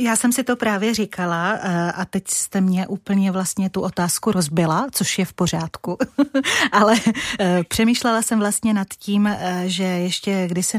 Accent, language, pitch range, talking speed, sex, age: native, Czech, 180-205 Hz, 155 wpm, female, 30-49